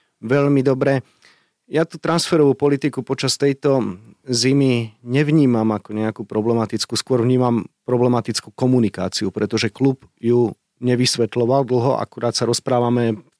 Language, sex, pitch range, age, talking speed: Slovak, male, 115-130 Hz, 30-49, 115 wpm